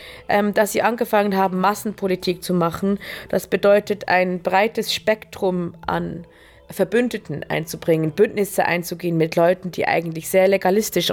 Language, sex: German, female